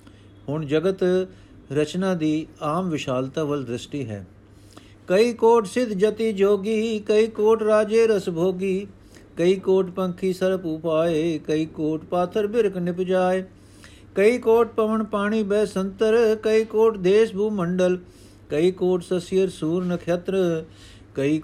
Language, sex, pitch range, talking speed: Punjabi, male, 145-190 Hz, 130 wpm